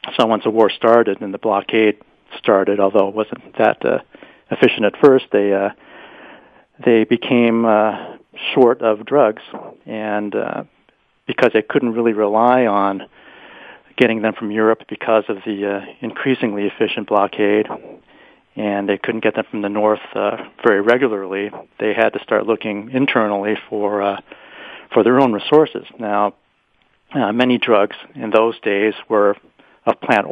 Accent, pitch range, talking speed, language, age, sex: American, 105-115 Hz, 150 wpm, English, 40-59, male